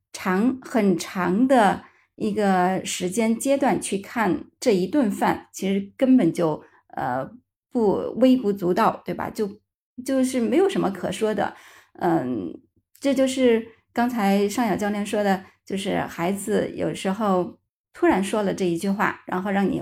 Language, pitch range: Chinese, 185-230 Hz